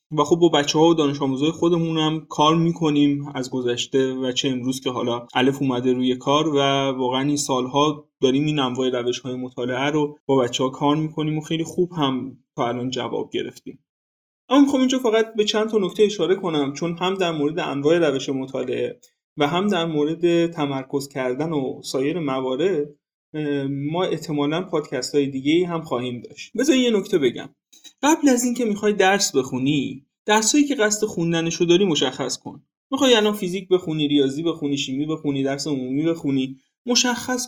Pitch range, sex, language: 135-200 Hz, male, Persian